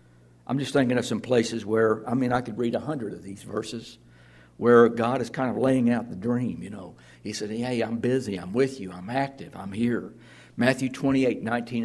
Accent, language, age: American, English, 60-79